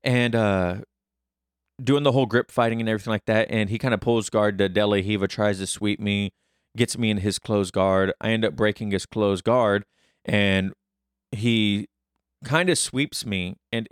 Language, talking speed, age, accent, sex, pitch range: English, 190 wpm, 20-39, American, male, 95-115 Hz